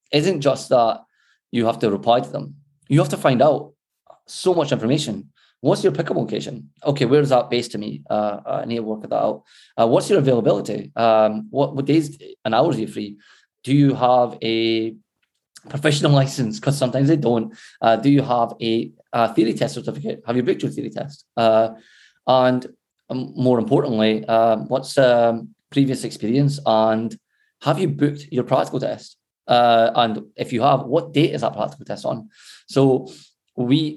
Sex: male